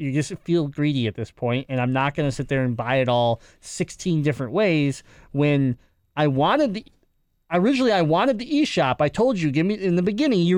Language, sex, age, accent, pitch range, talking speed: English, male, 20-39, American, 135-175 Hz, 220 wpm